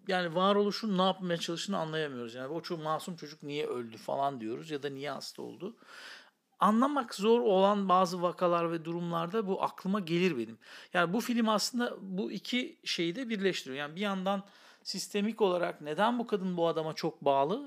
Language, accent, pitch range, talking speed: Turkish, native, 165-215 Hz, 175 wpm